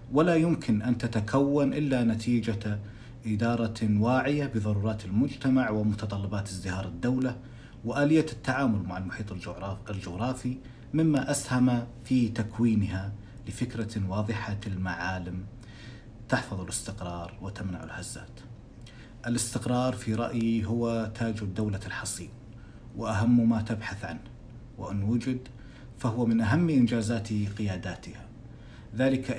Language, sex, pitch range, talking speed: Arabic, male, 105-125 Hz, 100 wpm